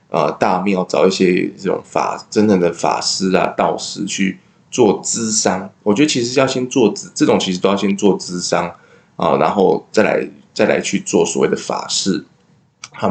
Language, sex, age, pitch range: Chinese, male, 20-39, 95-125 Hz